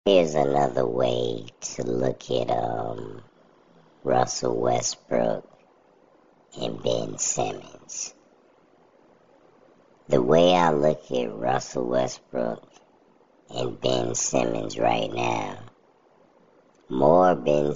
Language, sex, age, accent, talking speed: English, male, 50-69, American, 90 wpm